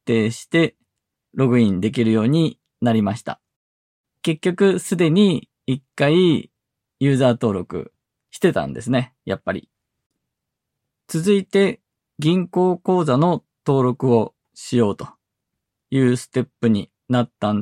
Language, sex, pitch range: Japanese, male, 120-165 Hz